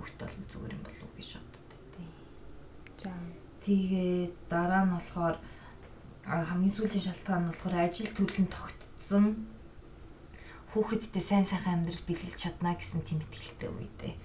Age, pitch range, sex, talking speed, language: 20-39, 165-195 Hz, female, 120 wpm, Russian